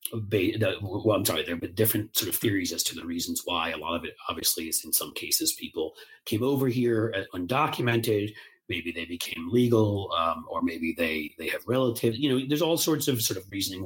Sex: male